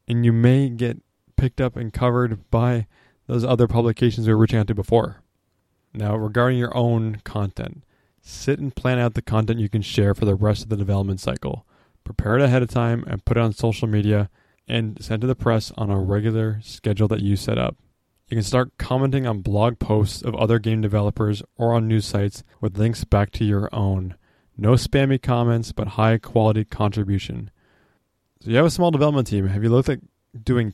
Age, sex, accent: 20-39, male, American